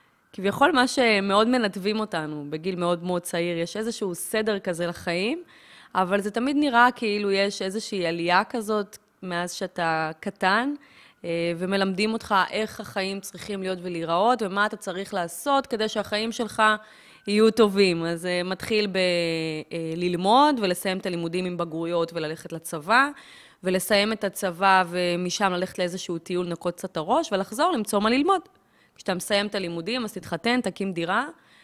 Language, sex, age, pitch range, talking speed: Hebrew, female, 20-39, 175-220 Hz, 140 wpm